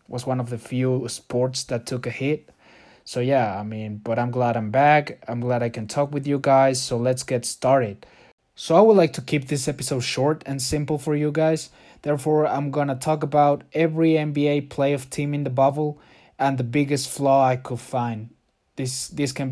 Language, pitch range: English, 125-145 Hz